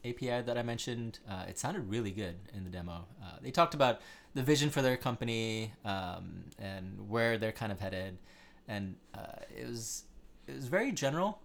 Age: 30-49